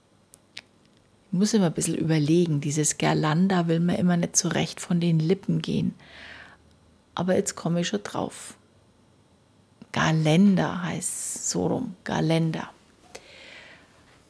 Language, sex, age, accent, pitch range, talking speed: German, female, 40-59, German, 155-190 Hz, 120 wpm